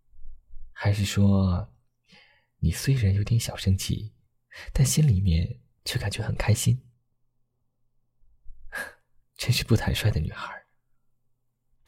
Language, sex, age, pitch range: Chinese, male, 30-49, 105-125 Hz